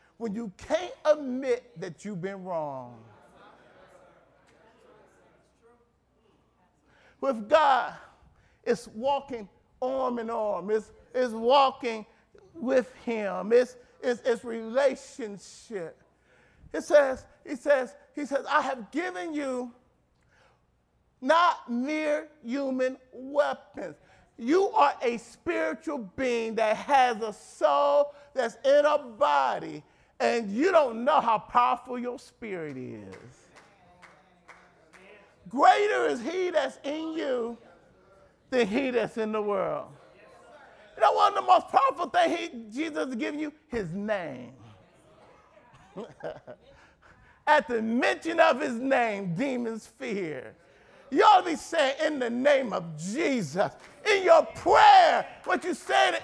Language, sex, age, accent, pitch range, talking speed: English, male, 40-59, American, 230-300 Hz, 120 wpm